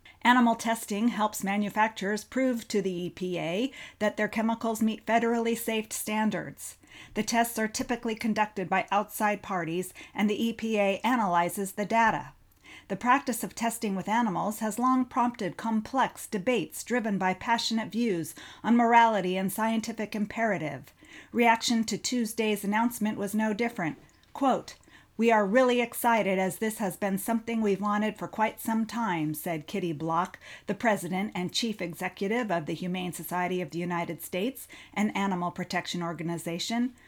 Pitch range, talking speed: 190-230 Hz, 145 wpm